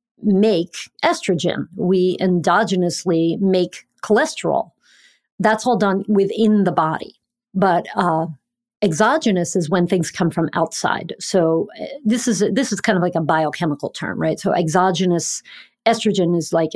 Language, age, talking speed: English, 50-69, 135 wpm